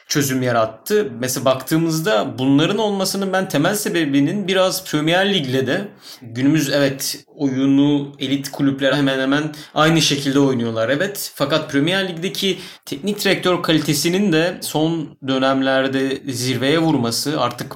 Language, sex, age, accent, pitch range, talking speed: Turkish, male, 30-49, native, 135-160 Hz, 120 wpm